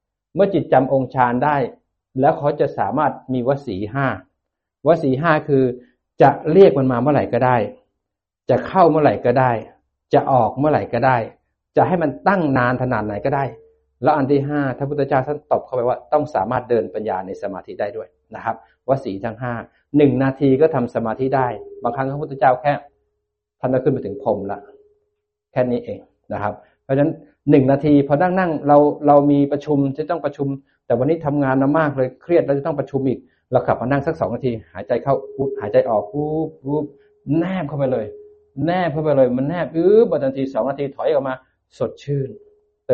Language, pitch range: Thai, 120-150 Hz